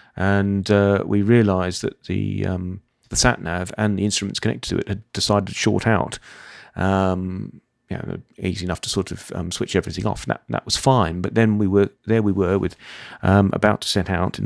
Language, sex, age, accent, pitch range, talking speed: English, male, 40-59, British, 95-105 Hz, 220 wpm